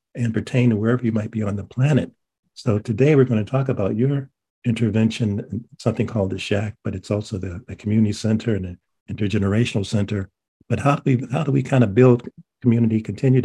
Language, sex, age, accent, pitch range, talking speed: English, male, 50-69, American, 105-125 Hz, 200 wpm